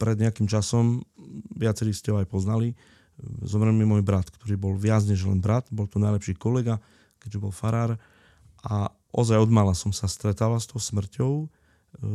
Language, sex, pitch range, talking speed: Slovak, male, 100-115 Hz, 175 wpm